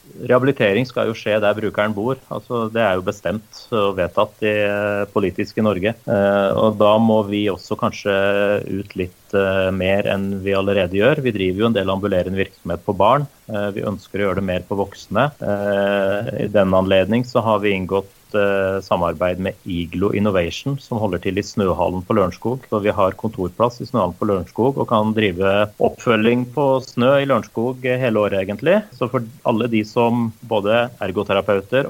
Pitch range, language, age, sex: 95-110 Hz, English, 30-49, male